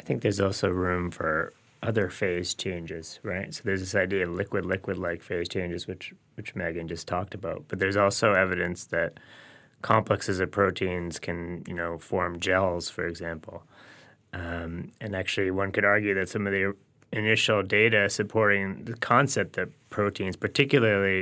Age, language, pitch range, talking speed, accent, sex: 20-39, English, 90-105 Hz, 160 wpm, American, male